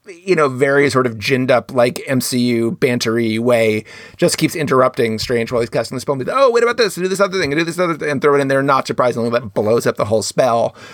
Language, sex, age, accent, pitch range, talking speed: English, male, 30-49, American, 115-140 Hz, 260 wpm